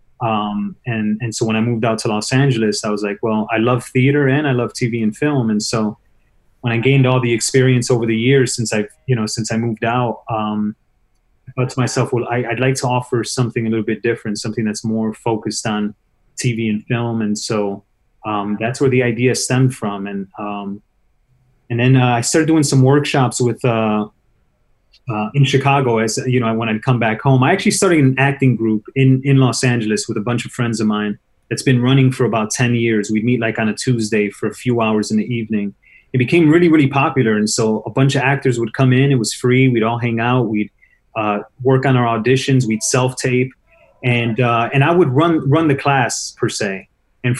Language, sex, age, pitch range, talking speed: English, male, 30-49, 110-130 Hz, 225 wpm